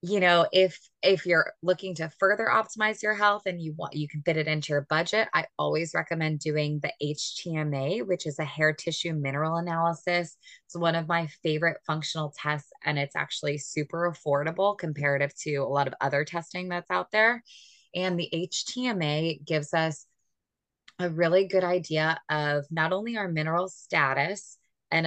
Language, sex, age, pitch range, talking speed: English, female, 20-39, 150-185 Hz, 170 wpm